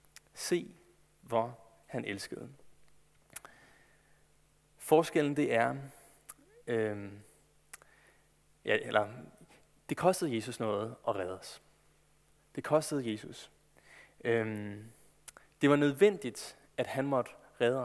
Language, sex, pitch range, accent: Danish, male, 110-140 Hz, native